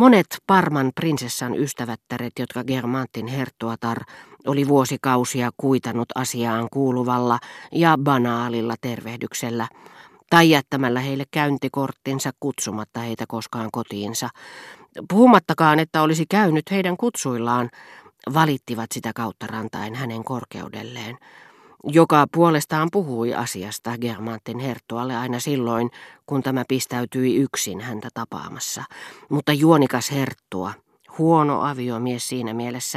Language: Finnish